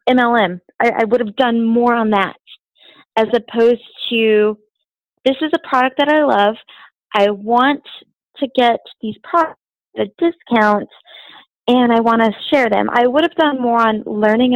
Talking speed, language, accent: 165 wpm, English, American